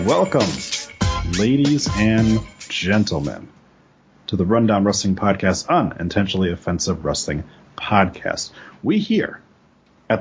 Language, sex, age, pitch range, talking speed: English, male, 30-49, 95-130 Hz, 95 wpm